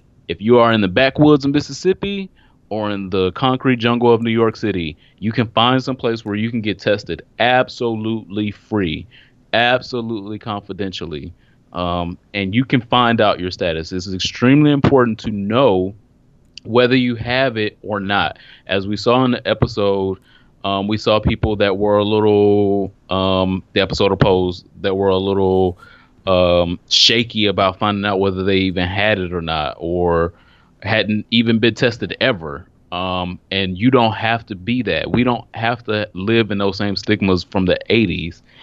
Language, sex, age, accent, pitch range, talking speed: English, male, 30-49, American, 95-115 Hz, 170 wpm